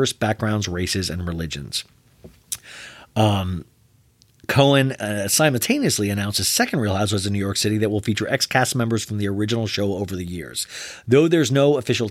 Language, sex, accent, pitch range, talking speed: English, male, American, 100-130 Hz, 170 wpm